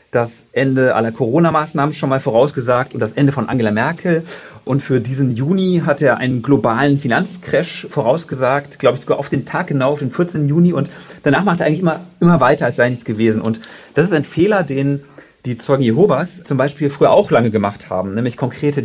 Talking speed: 205 wpm